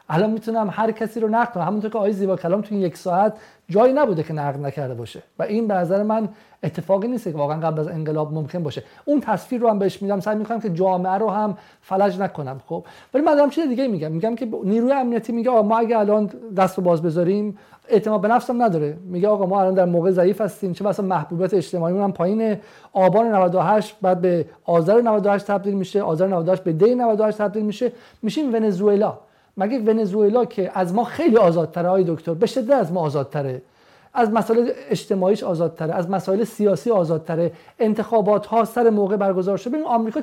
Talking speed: 195 wpm